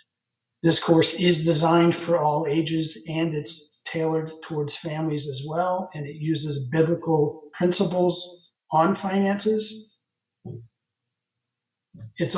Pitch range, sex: 145-170 Hz, male